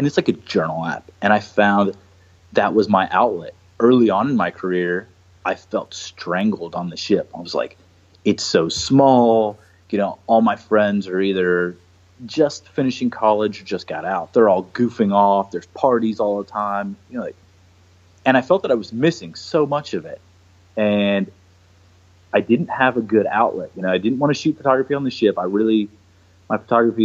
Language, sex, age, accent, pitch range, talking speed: English, male, 30-49, American, 90-110 Hz, 195 wpm